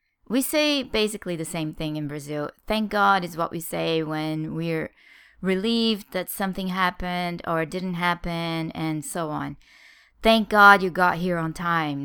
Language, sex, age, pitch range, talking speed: English, female, 20-39, 160-215 Hz, 165 wpm